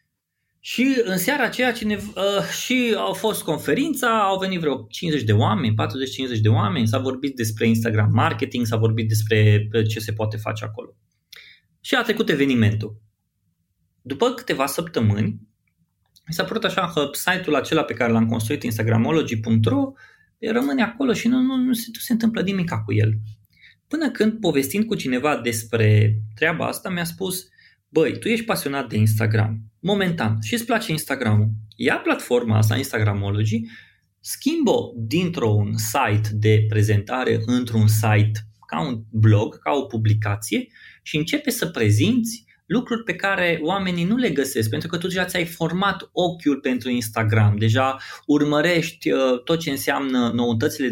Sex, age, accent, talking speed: male, 20-39, native, 155 wpm